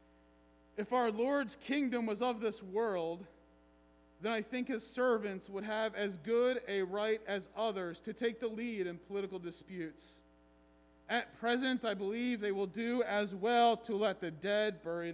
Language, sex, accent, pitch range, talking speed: English, male, American, 165-230 Hz, 165 wpm